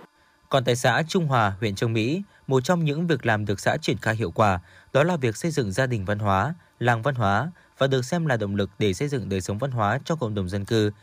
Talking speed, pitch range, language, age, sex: 265 wpm, 105-150 Hz, Vietnamese, 20-39, male